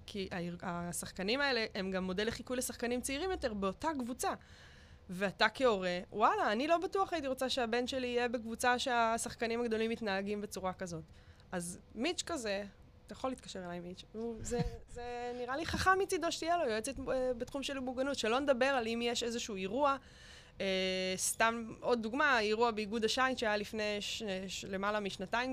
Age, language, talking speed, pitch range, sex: 20-39, Hebrew, 165 wpm, 195-255 Hz, female